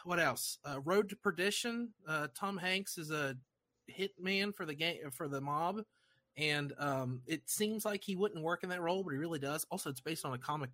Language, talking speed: English, 225 wpm